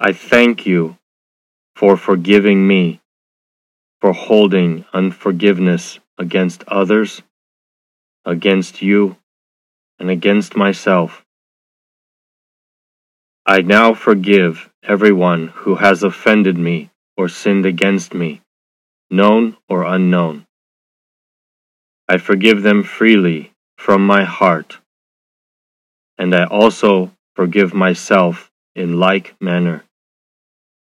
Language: English